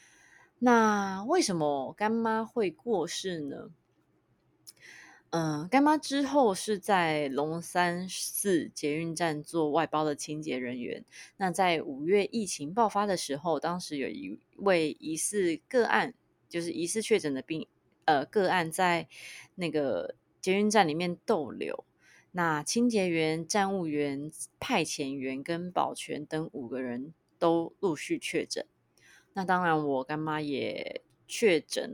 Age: 20-39